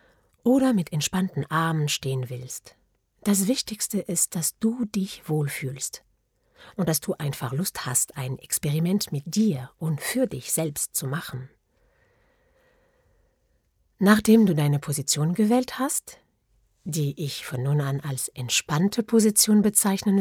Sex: female